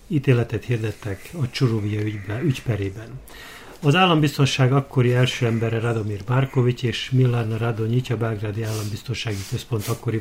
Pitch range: 110-130 Hz